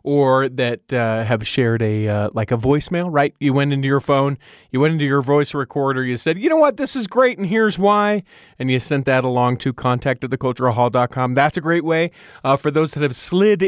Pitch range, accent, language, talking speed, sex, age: 135-200 Hz, American, English, 235 wpm, male, 30-49